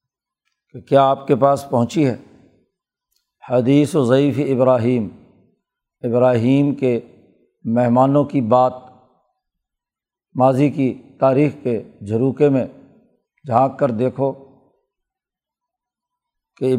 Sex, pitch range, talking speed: male, 125-140 Hz, 95 wpm